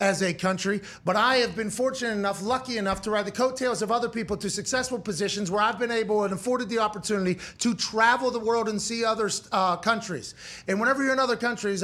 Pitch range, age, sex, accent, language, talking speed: 200-245 Hz, 30-49, male, American, English, 225 wpm